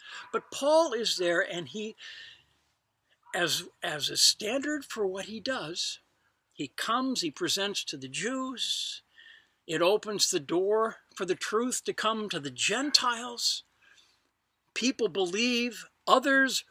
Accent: American